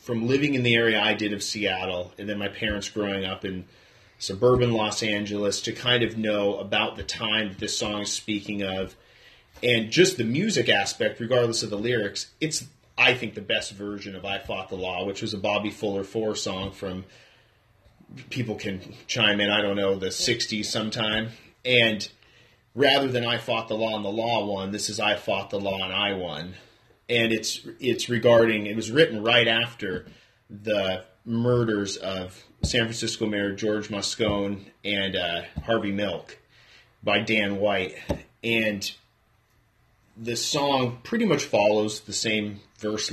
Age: 30-49